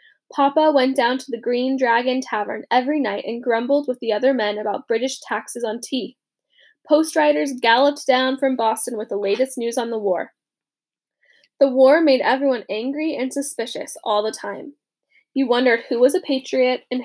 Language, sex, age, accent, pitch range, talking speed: English, female, 10-29, American, 240-315 Hz, 180 wpm